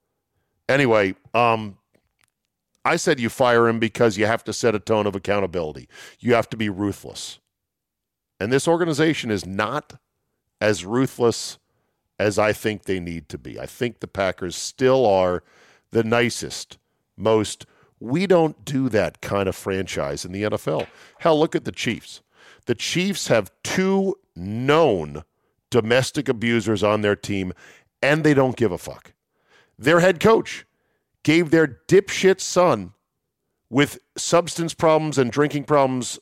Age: 50-69